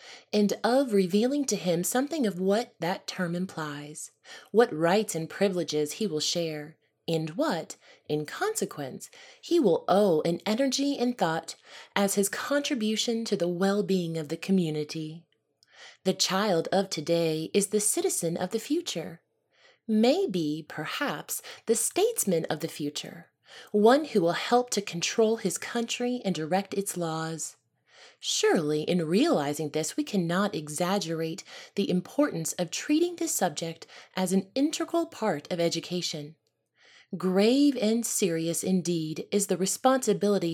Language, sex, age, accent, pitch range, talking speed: English, female, 20-39, American, 165-235 Hz, 140 wpm